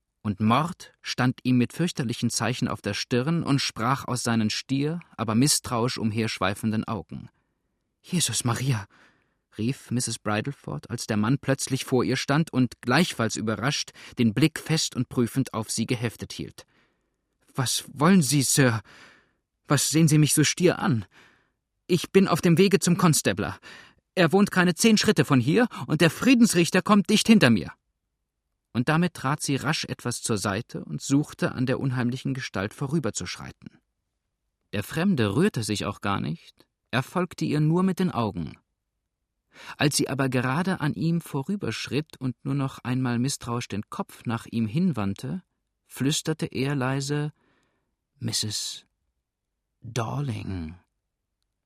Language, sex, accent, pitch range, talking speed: German, male, German, 110-155 Hz, 145 wpm